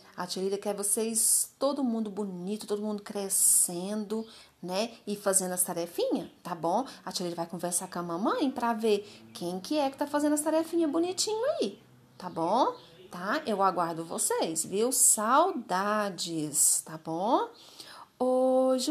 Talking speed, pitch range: 150 wpm, 170-225 Hz